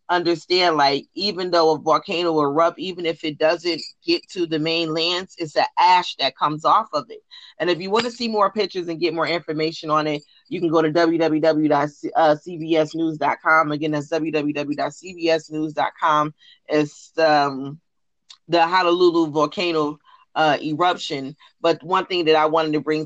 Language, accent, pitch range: English, American, 150-180 Hz